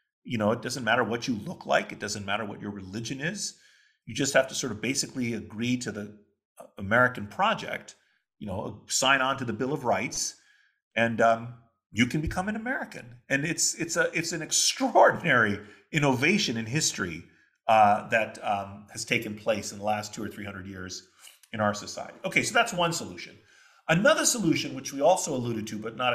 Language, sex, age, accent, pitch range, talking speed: English, male, 40-59, American, 110-165 Hz, 195 wpm